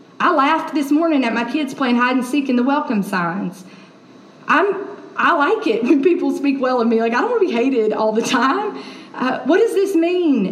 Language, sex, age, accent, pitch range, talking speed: English, female, 40-59, American, 240-295 Hz, 230 wpm